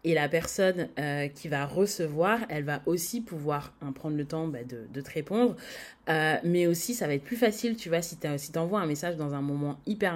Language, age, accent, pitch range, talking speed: French, 30-49, French, 150-185 Hz, 235 wpm